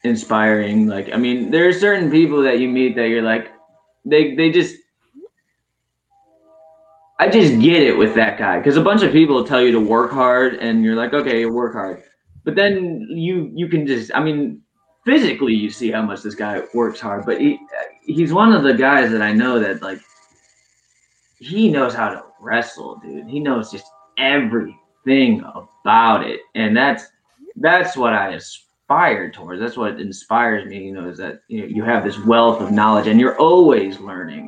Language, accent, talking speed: English, American, 190 wpm